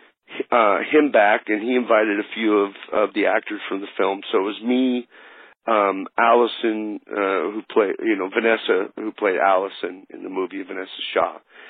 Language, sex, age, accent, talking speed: English, male, 50-69, American, 180 wpm